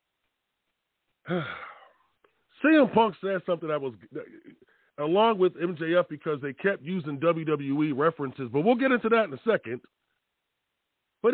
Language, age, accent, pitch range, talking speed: English, 40-59, American, 140-235 Hz, 125 wpm